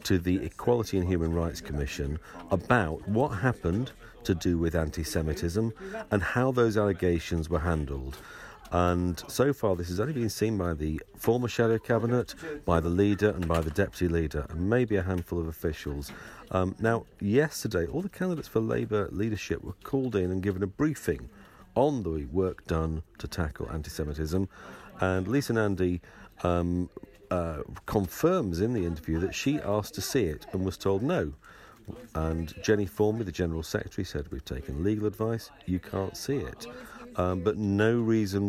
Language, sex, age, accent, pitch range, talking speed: English, male, 50-69, British, 85-110 Hz, 165 wpm